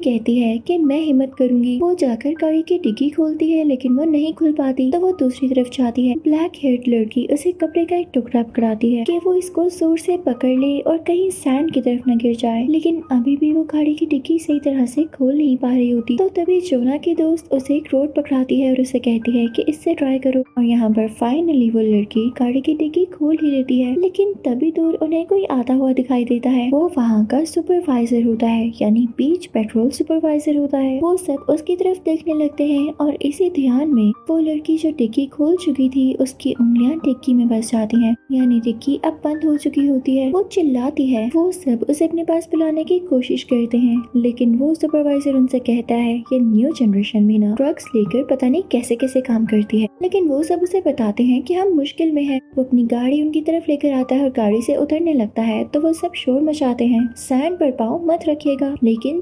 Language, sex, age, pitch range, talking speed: Hindi, female, 20-39, 245-320 Hz, 225 wpm